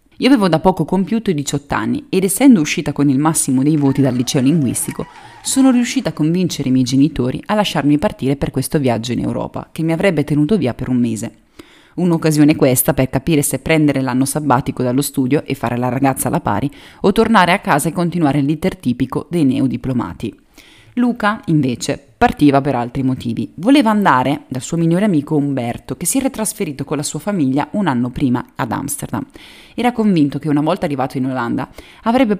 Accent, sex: native, female